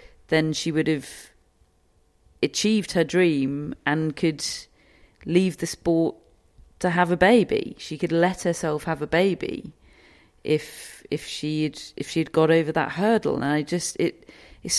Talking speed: 155 wpm